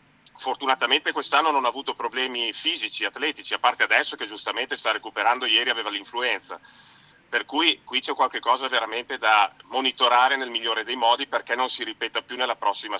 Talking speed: 170 wpm